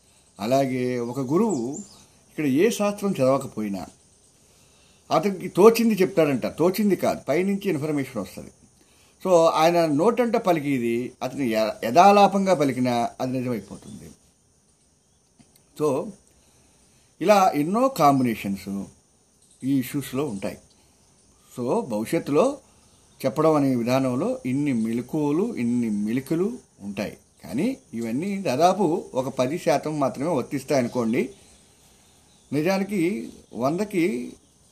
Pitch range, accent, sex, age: 125-175 Hz, native, male, 50-69